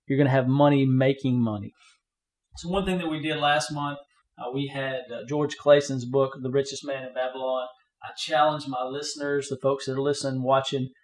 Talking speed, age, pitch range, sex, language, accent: 200 wpm, 40-59, 135-155 Hz, male, English, American